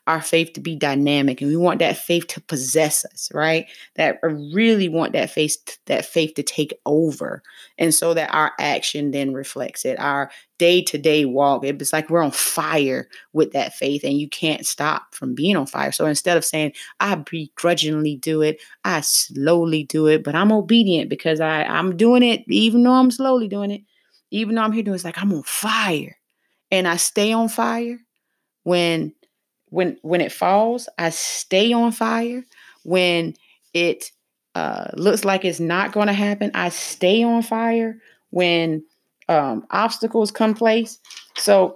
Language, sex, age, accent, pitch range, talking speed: English, female, 30-49, American, 155-215 Hz, 175 wpm